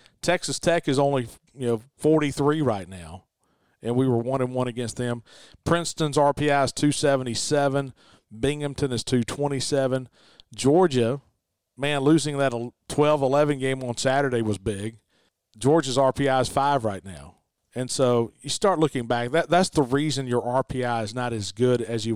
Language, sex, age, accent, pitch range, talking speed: English, male, 40-59, American, 120-145 Hz, 165 wpm